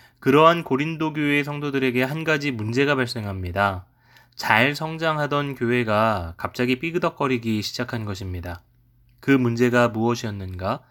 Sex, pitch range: male, 115-140 Hz